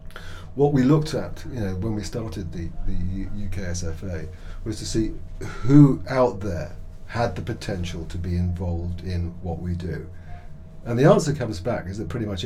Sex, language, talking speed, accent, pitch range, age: male, English, 185 wpm, British, 85-105 Hz, 40-59